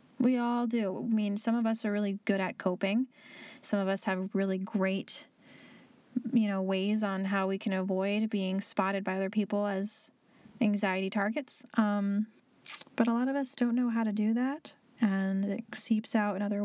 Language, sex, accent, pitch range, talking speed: English, female, American, 195-230 Hz, 190 wpm